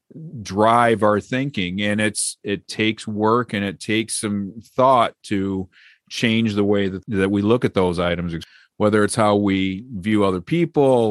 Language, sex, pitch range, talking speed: English, male, 95-110 Hz, 165 wpm